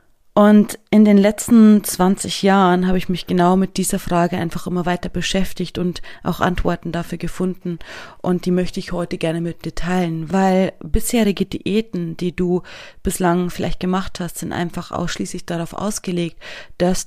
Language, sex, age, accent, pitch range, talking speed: German, female, 30-49, German, 170-195 Hz, 160 wpm